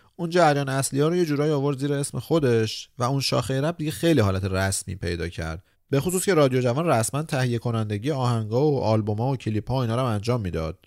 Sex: male